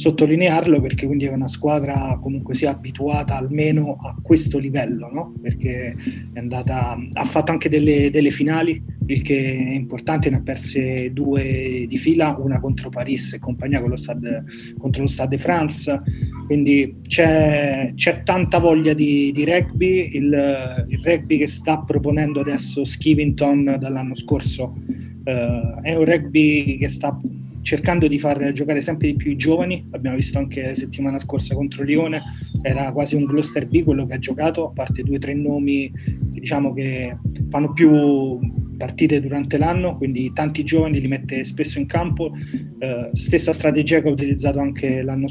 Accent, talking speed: native, 165 wpm